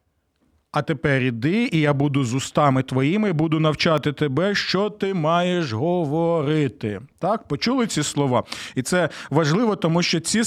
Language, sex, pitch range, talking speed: Ukrainian, male, 155-190 Hz, 155 wpm